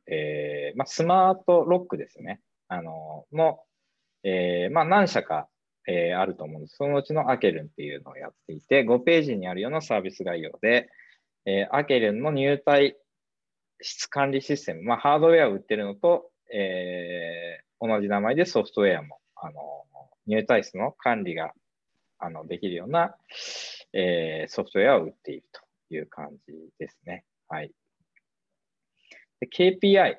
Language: Japanese